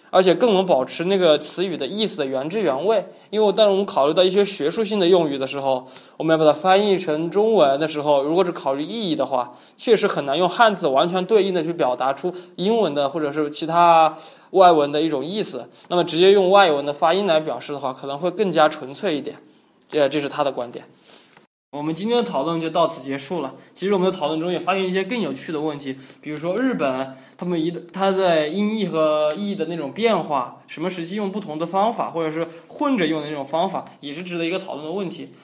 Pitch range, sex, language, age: 150-185 Hz, male, Korean, 20-39